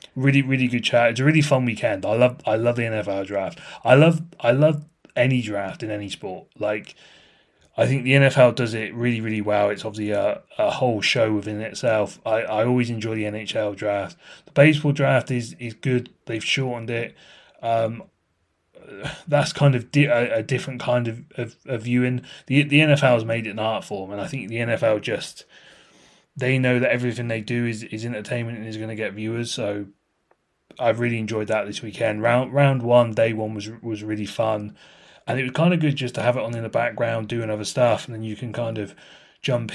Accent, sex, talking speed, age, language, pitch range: British, male, 215 wpm, 30-49, English, 110-125 Hz